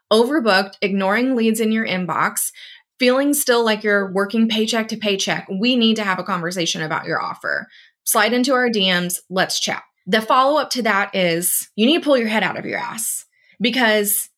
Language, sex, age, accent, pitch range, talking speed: English, female, 20-39, American, 200-255 Hz, 190 wpm